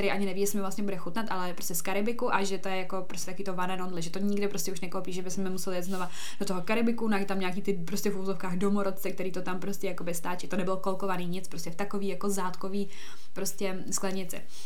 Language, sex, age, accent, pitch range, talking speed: Czech, female, 20-39, native, 185-210 Hz, 250 wpm